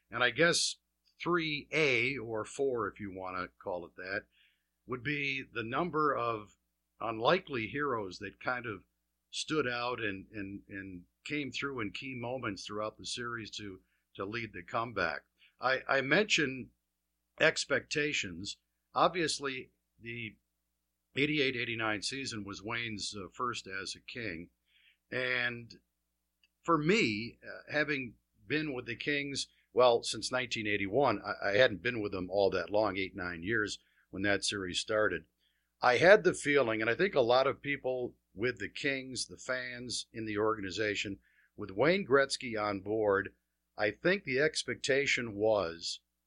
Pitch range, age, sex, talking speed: 90-125 Hz, 50-69, male, 140 wpm